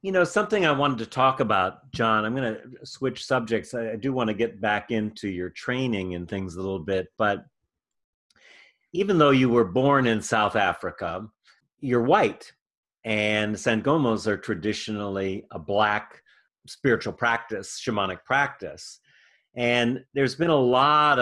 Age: 40-59